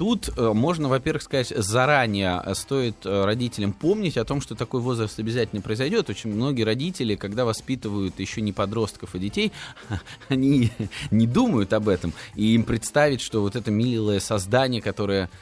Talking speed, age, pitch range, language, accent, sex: 150 wpm, 20-39, 110-155 Hz, Russian, native, male